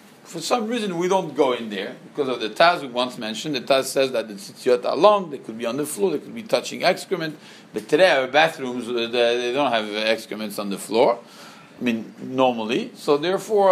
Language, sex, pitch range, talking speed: English, male, 140-205 Hz, 220 wpm